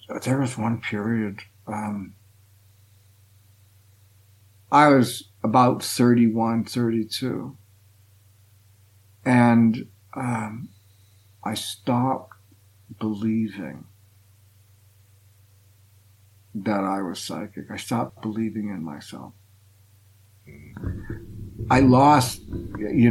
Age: 60-79